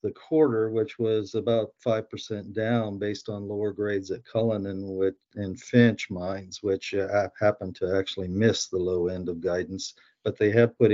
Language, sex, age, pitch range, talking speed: English, male, 50-69, 95-110 Hz, 170 wpm